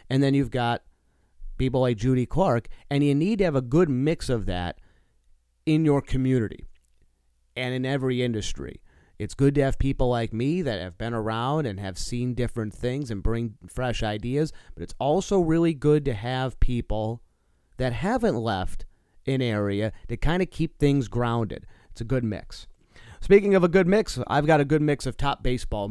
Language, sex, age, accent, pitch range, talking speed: English, male, 30-49, American, 95-135 Hz, 190 wpm